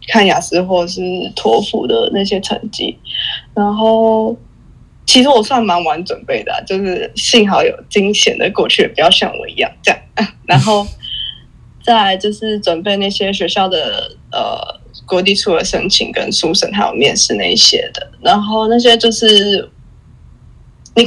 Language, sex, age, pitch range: Chinese, female, 20-39, 190-235 Hz